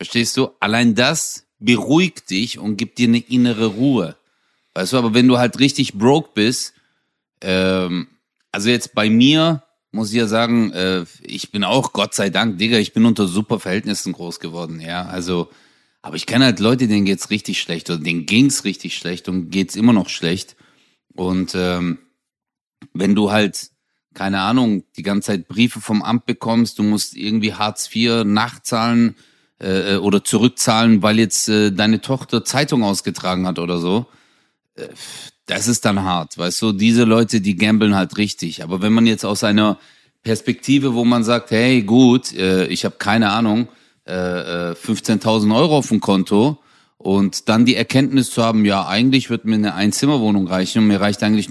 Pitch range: 95-120 Hz